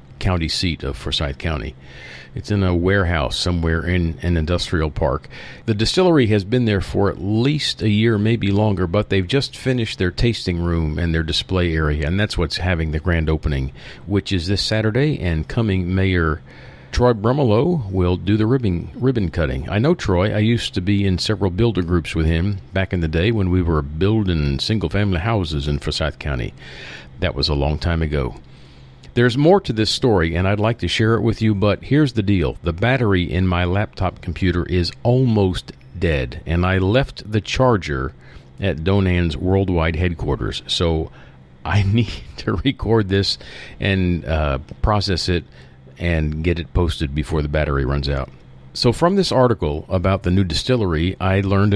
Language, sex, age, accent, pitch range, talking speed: English, male, 50-69, American, 80-110 Hz, 180 wpm